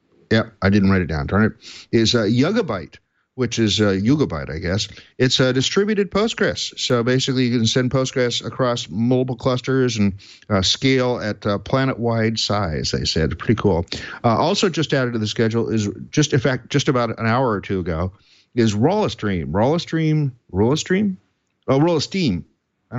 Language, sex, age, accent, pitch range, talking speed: English, male, 50-69, American, 105-130 Hz, 175 wpm